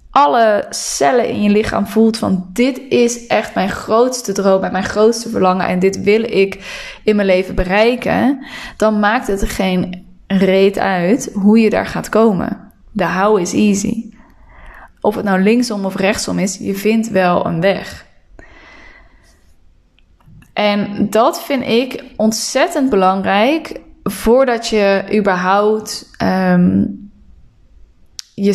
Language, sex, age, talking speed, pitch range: Dutch, female, 10-29, 135 wpm, 185-215 Hz